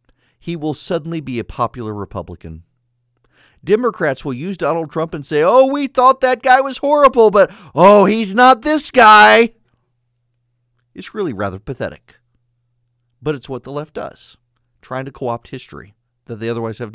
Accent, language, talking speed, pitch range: American, English, 160 wpm, 120-155 Hz